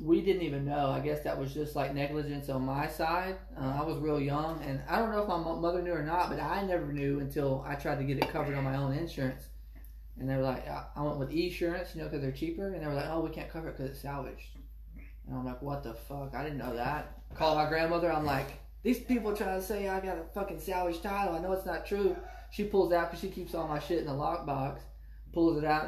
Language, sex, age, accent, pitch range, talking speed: English, male, 20-39, American, 130-165 Hz, 270 wpm